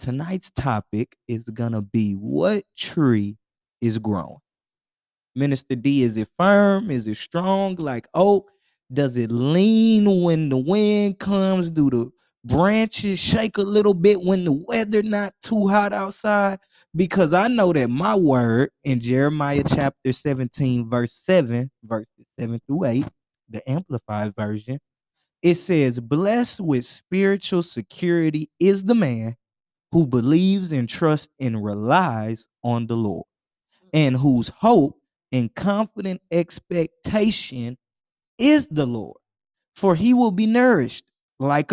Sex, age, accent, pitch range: male, 20-39, American, 125-195 Hz